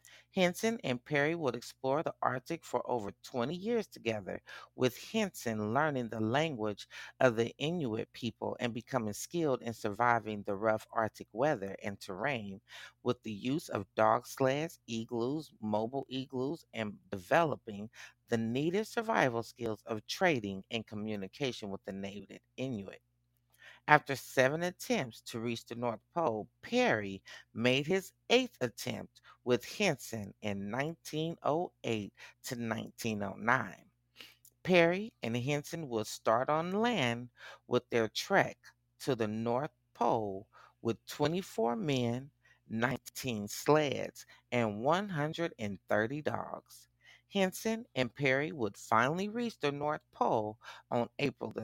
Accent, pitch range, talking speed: American, 110-150 Hz, 125 wpm